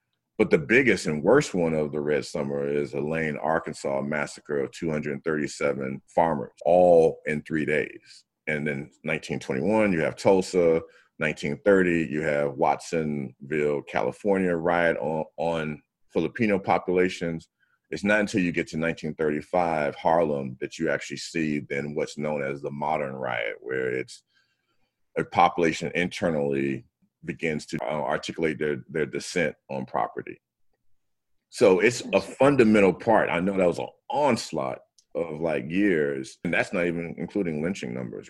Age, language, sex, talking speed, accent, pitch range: 40-59, English, male, 145 wpm, American, 75-90 Hz